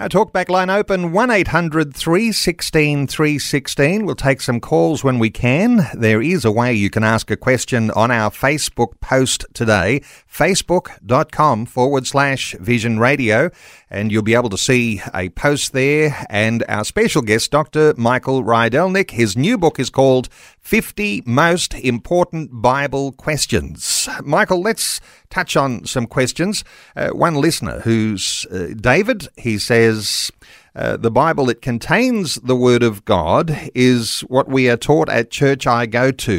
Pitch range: 115-150 Hz